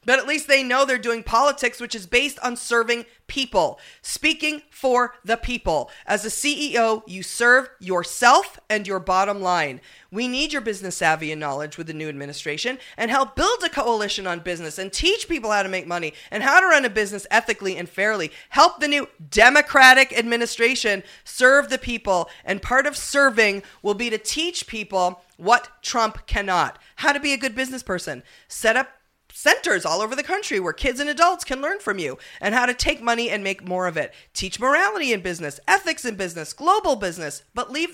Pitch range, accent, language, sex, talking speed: 195-275 Hz, American, English, female, 200 wpm